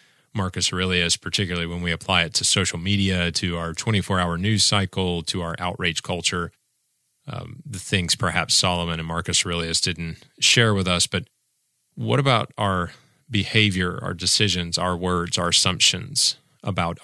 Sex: male